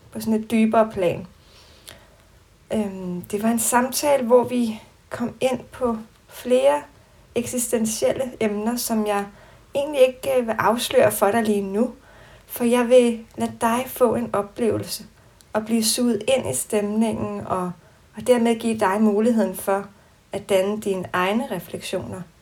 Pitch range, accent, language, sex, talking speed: 200-240 Hz, native, Danish, female, 140 wpm